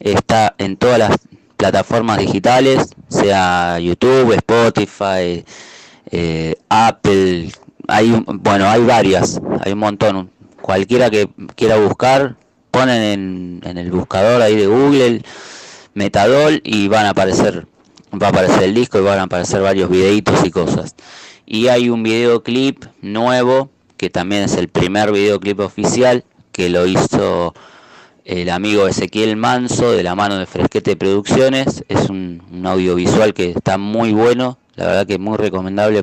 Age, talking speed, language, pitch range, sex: 20-39, 145 wpm, Italian, 95-120 Hz, male